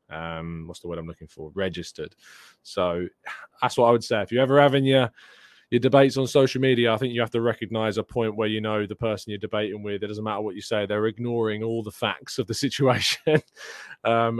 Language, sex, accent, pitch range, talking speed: English, male, British, 105-135 Hz, 230 wpm